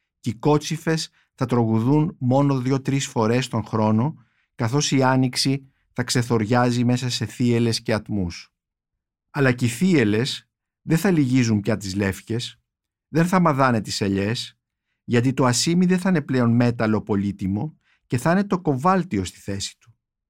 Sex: male